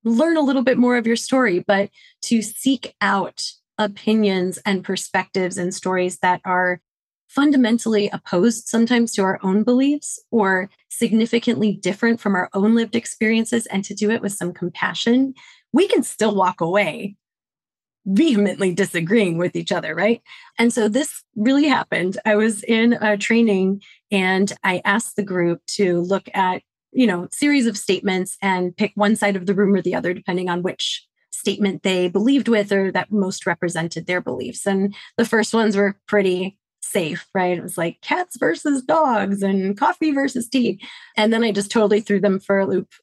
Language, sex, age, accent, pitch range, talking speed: English, female, 30-49, American, 190-230 Hz, 175 wpm